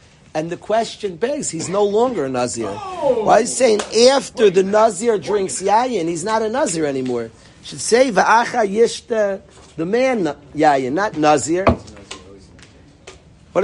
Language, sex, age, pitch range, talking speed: English, male, 50-69, 170-235 Hz, 150 wpm